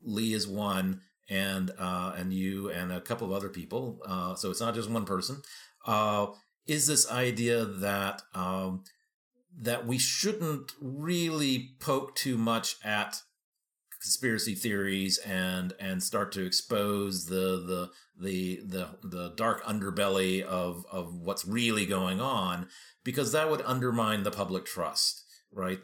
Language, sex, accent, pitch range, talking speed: English, male, American, 95-120 Hz, 145 wpm